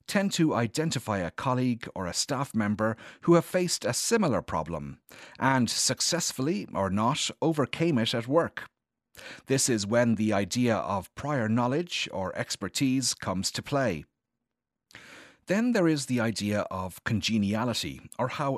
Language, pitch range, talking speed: English, 95-135 Hz, 145 wpm